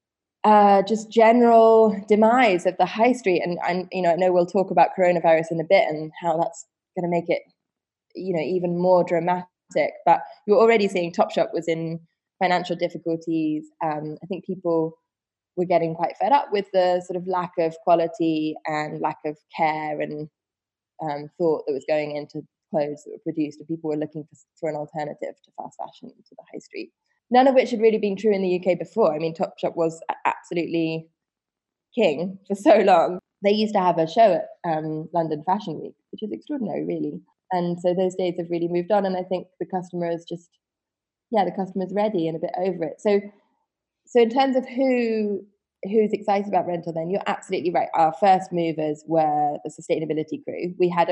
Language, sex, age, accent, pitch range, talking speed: English, female, 20-39, British, 160-195 Hz, 200 wpm